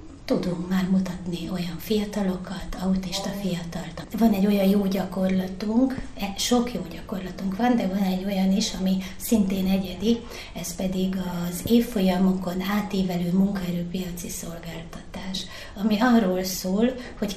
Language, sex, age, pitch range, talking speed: Hungarian, female, 30-49, 185-205 Hz, 120 wpm